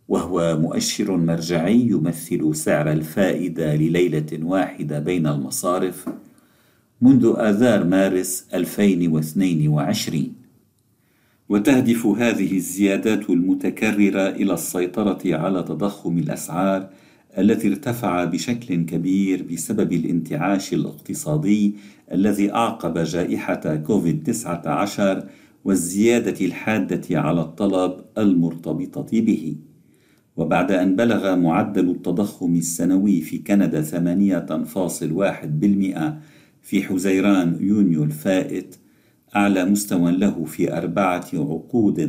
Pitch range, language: 85-105 Hz, Arabic